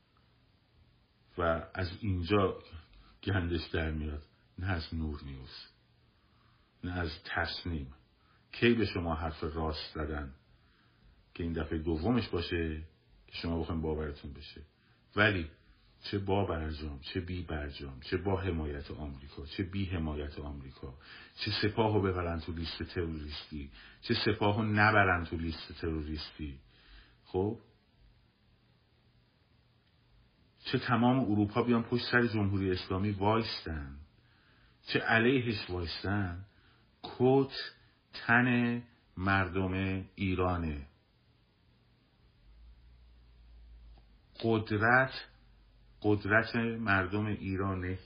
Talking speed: 95 wpm